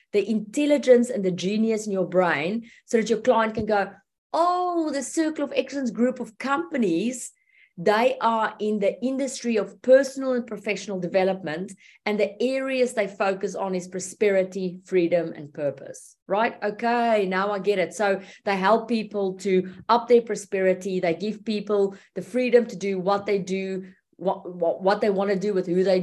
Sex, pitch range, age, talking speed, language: female, 185-230 Hz, 30-49, 180 wpm, English